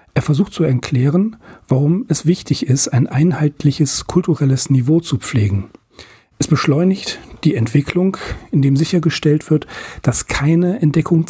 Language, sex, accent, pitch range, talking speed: German, male, German, 130-165 Hz, 130 wpm